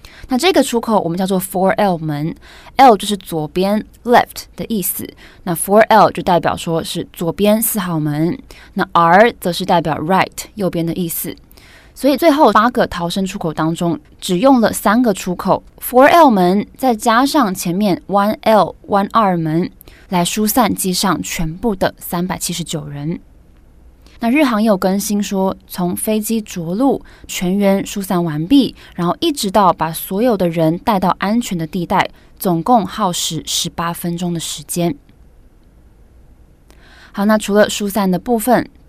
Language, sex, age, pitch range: Chinese, female, 20-39, 170-215 Hz